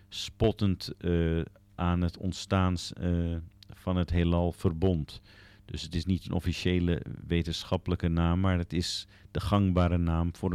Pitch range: 90-105 Hz